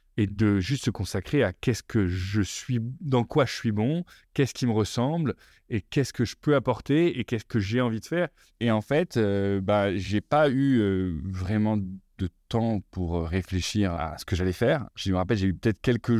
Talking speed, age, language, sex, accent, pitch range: 215 wpm, 20-39, French, male, French, 95-115 Hz